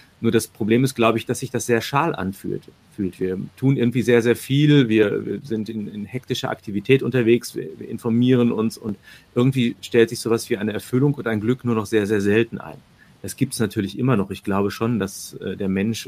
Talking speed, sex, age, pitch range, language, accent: 215 wpm, male, 40-59, 100-120 Hz, German, German